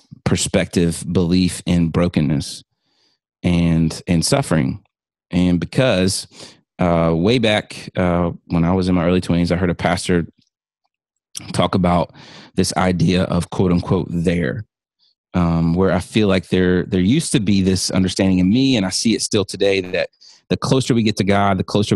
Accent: American